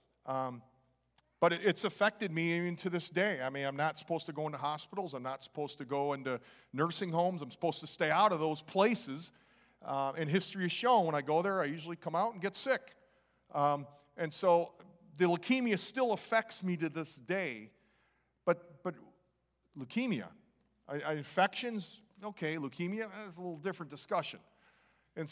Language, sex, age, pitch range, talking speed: English, male, 40-59, 140-190 Hz, 180 wpm